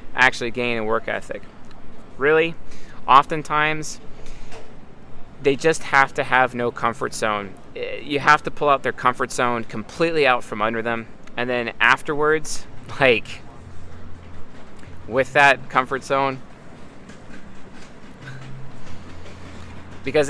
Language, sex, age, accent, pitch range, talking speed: English, male, 30-49, American, 110-140 Hz, 110 wpm